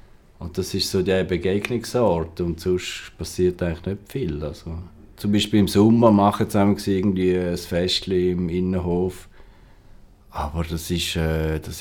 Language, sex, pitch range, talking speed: German, male, 85-105 Hz, 140 wpm